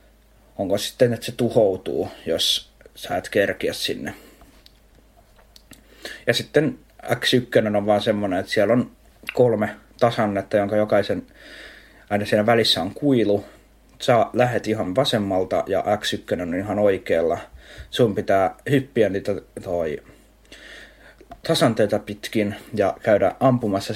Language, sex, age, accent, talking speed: Finnish, male, 30-49, native, 120 wpm